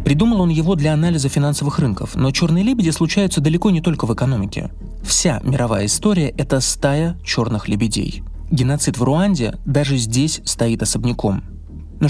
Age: 20-39